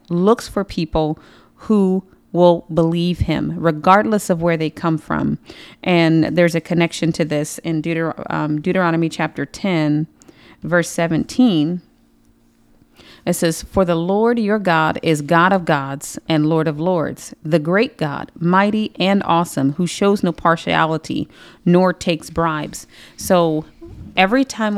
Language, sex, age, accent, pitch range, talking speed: English, female, 30-49, American, 155-180 Hz, 140 wpm